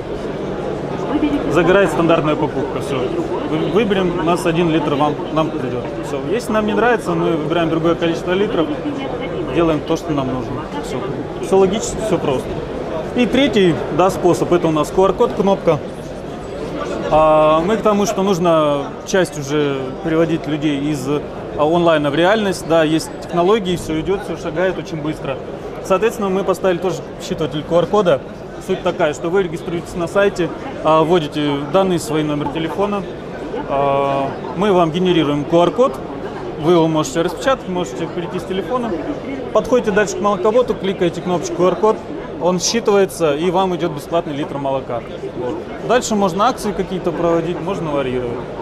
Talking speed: 140 wpm